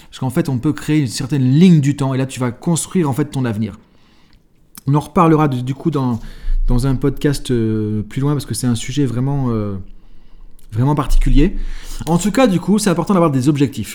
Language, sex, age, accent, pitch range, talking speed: French, male, 30-49, French, 135-170 Hz, 225 wpm